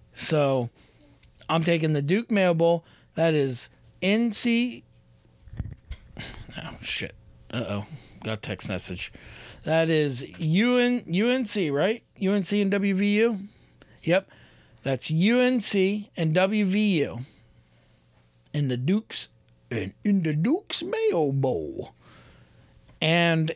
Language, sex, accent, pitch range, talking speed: English, male, American, 135-210 Hz, 95 wpm